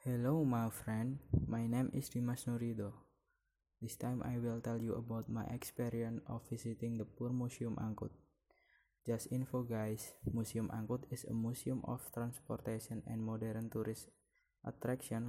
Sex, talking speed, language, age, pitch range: male, 145 wpm, Indonesian, 20-39, 110-125 Hz